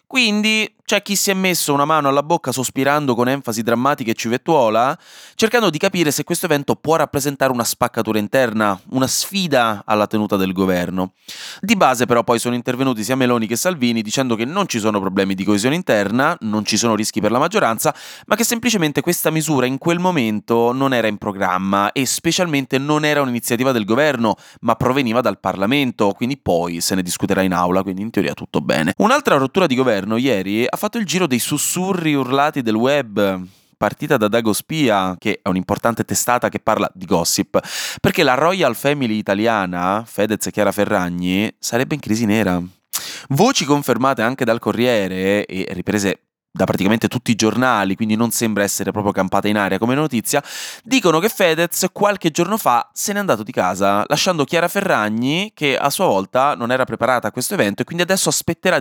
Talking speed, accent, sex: 185 wpm, native, male